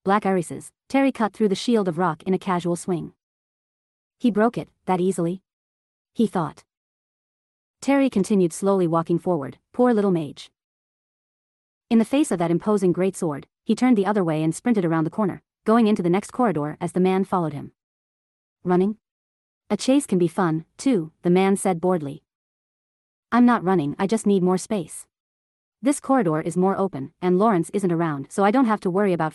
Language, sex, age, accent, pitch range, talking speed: English, female, 40-59, American, 170-215 Hz, 185 wpm